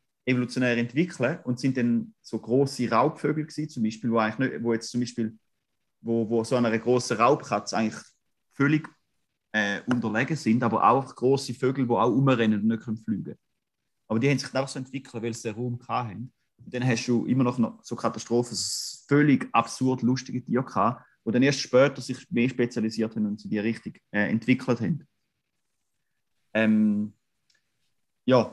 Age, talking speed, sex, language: 30-49, 175 wpm, male, German